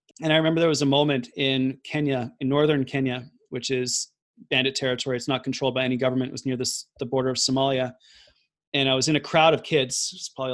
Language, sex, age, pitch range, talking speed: English, male, 30-49, 125-145 Hz, 220 wpm